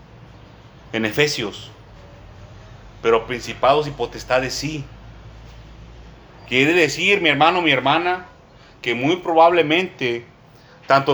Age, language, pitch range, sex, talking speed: 30-49, Spanish, 120-165 Hz, male, 90 wpm